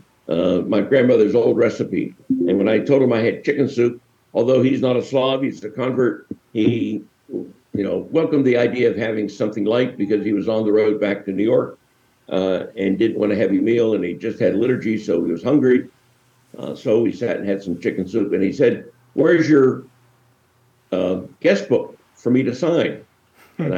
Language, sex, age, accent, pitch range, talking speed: English, male, 60-79, American, 105-130 Hz, 200 wpm